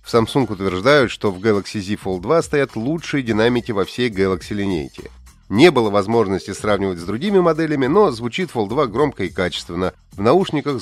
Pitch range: 100-160 Hz